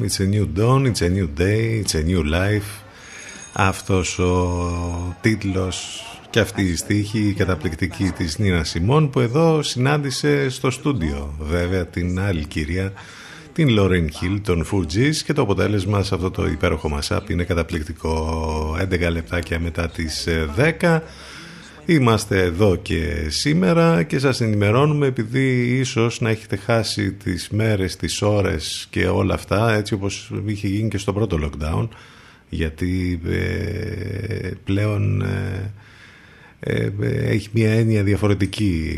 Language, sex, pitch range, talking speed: Greek, male, 90-110 Hz, 130 wpm